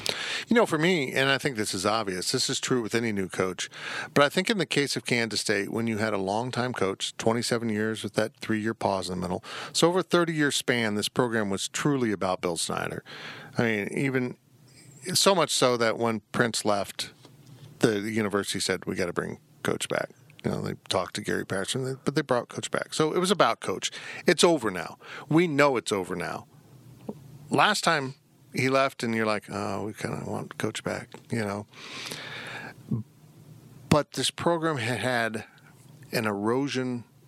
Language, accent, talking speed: English, American, 195 wpm